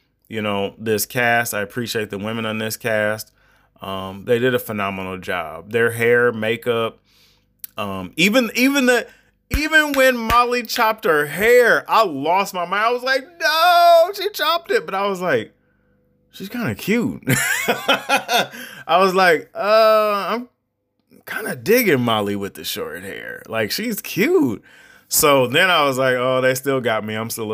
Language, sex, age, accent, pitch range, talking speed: English, male, 20-39, American, 105-150 Hz, 170 wpm